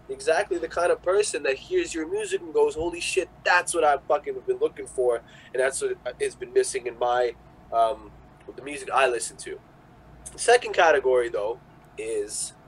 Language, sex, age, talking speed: English, male, 20-39, 185 wpm